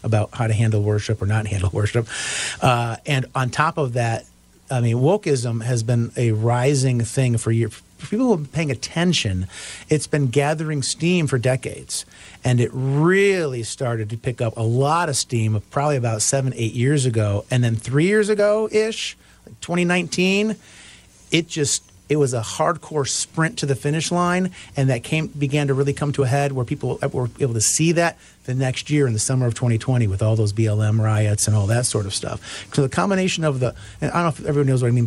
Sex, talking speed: male, 205 wpm